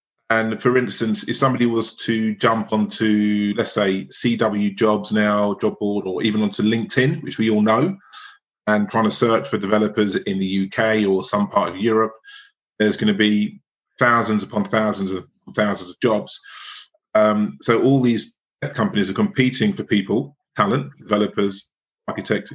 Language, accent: English, British